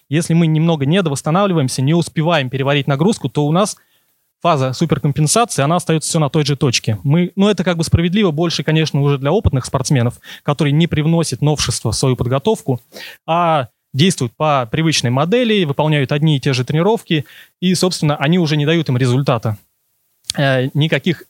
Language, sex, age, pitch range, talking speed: Russian, male, 20-39, 130-160 Hz, 165 wpm